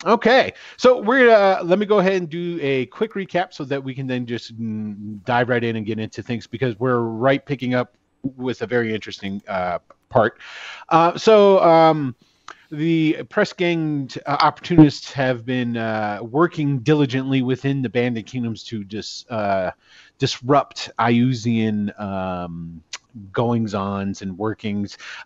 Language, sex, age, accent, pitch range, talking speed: English, male, 30-49, American, 110-155 Hz, 155 wpm